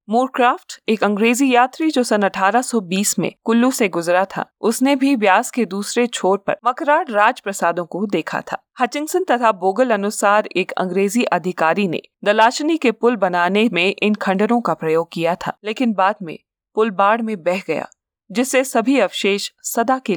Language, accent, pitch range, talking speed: Hindi, native, 190-250 Hz, 170 wpm